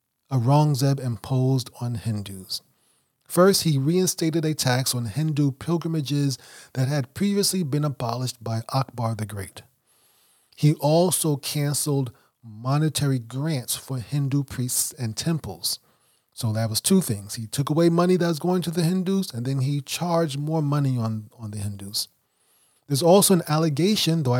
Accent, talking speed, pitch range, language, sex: American, 150 wpm, 120-155 Hz, English, male